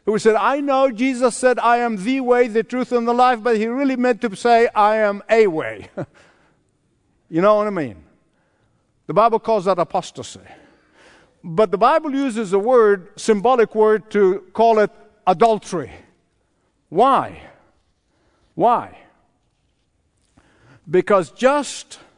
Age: 60-79